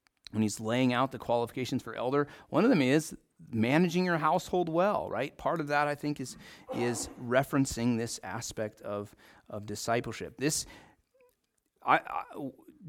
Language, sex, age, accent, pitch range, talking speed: English, male, 30-49, American, 115-165 Hz, 155 wpm